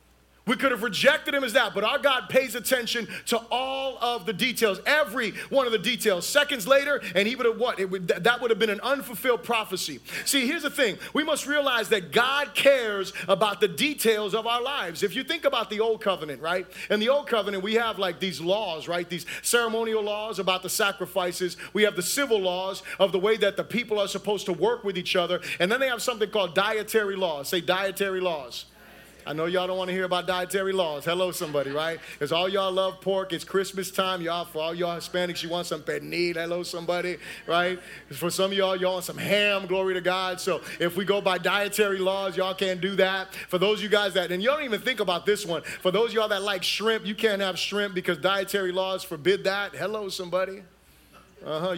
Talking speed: 225 wpm